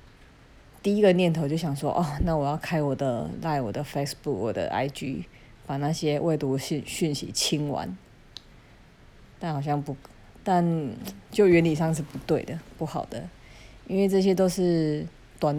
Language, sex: Chinese, female